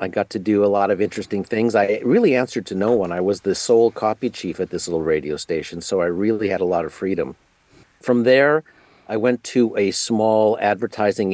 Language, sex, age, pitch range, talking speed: English, male, 50-69, 90-110 Hz, 220 wpm